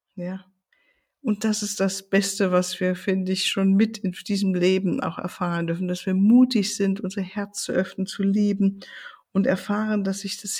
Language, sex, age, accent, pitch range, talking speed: German, female, 50-69, German, 195-235 Hz, 185 wpm